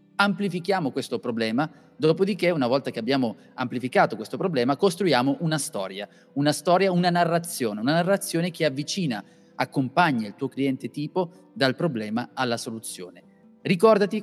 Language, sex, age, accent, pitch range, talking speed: Italian, male, 30-49, native, 125-175 Hz, 135 wpm